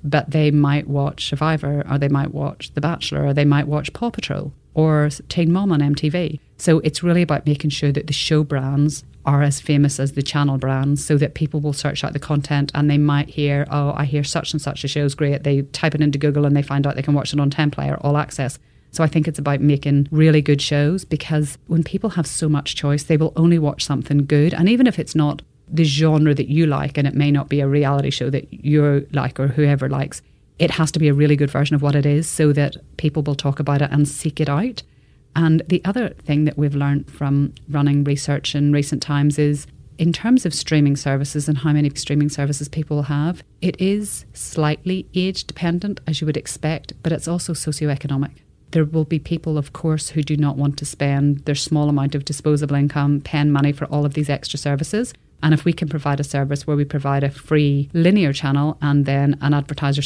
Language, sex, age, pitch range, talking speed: English, female, 30-49, 140-155 Hz, 230 wpm